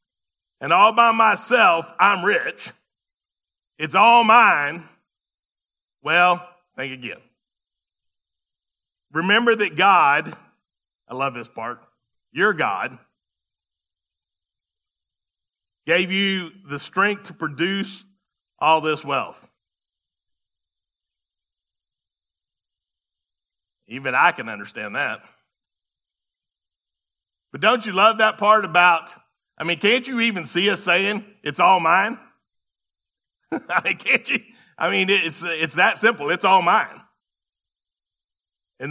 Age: 40-59